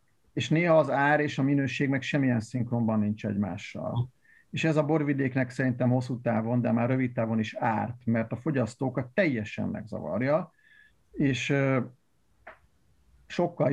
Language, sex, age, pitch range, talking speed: Hungarian, male, 50-69, 115-140 Hz, 140 wpm